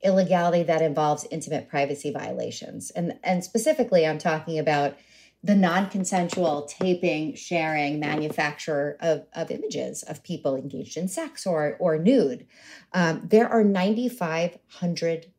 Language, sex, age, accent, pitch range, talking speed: English, female, 40-59, American, 155-190 Hz, 125 wpm